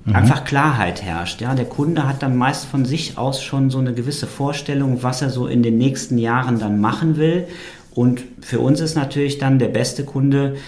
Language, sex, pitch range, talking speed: German, male, 105-130 Hz, 200 wpm